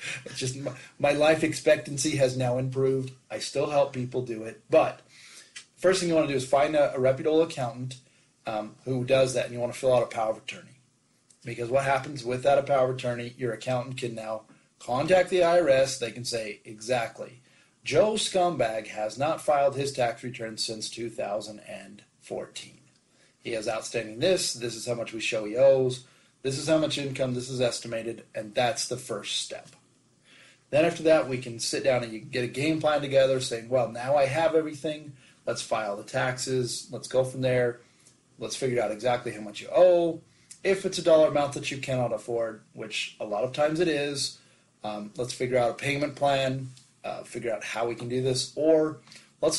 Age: 30-49